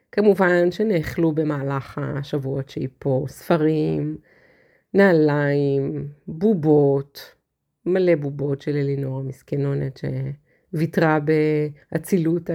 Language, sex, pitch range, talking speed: Hebrew, female, 145-180 Hz, 75 wpm